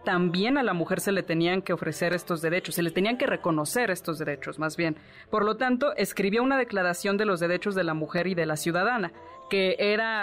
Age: 20-39